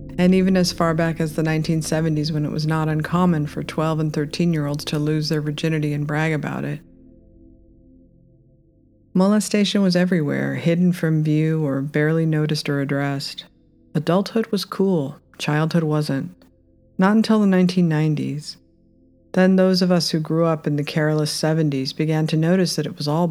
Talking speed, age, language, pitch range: 160 wpm, 40-59, English, 145-170 Hz